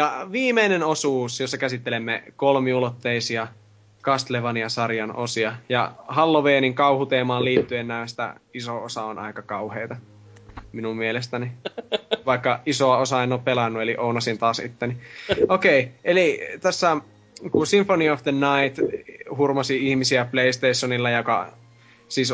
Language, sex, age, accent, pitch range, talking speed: Finnish, male, 20-39, native, 115-140 Hz, 120 wpm